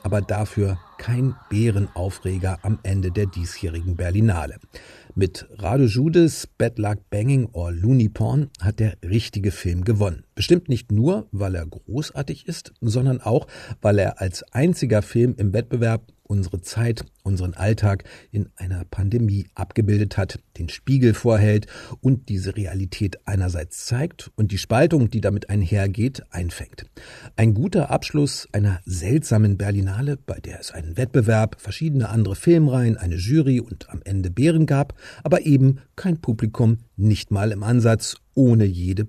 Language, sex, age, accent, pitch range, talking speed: German, male, 50-69, German, 95-120 Hz, 145 wpm